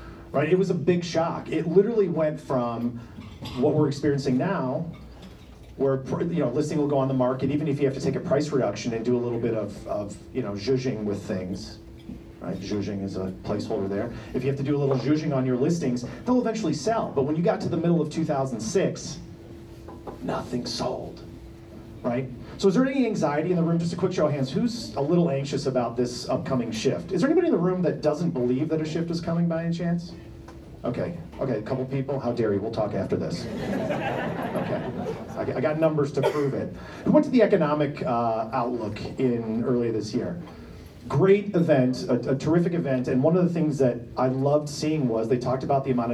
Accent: American